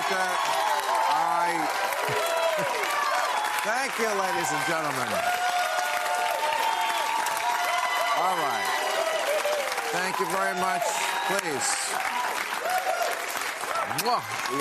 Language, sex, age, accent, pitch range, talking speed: English, male, 50-69, American, 100-150 Hz, 60 wpm